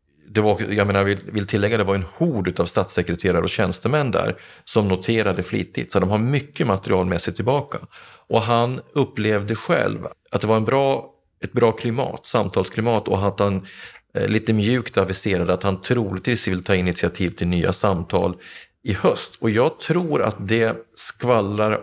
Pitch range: 95-115 Hz